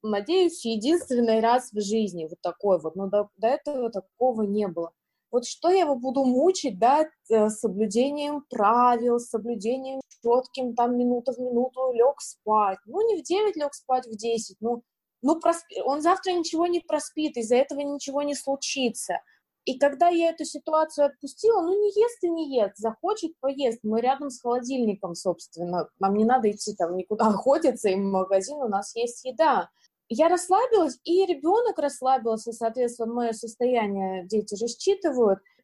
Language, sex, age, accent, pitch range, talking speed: Russian, female, 20-39, native, 220-310 Hz, 165 wpm